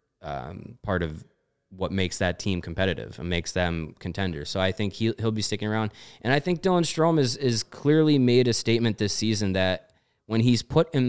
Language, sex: English, male